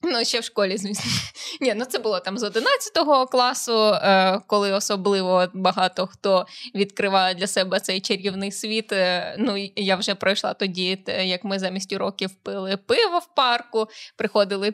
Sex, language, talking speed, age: female, Ukrainian, 150 wpm, 20-39